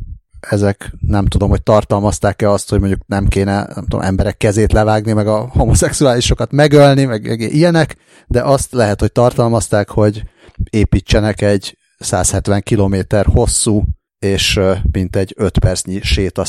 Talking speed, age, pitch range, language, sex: 140 wpm, 30-49, 95-110 Hz, Hungarian, male